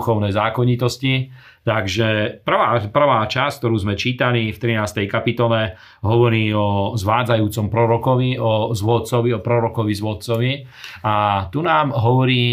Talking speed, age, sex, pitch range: 120 wpm, 40-59, male, 110-120 Hz